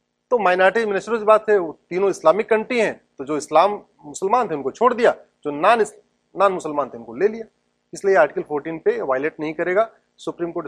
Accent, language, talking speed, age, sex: Indian, English, 200 wpm, 40-59, male